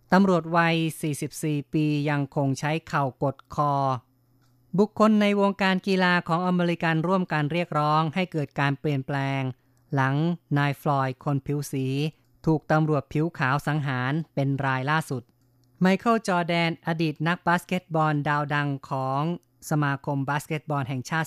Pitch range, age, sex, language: 135-160 Hz, 20-39, female, Thai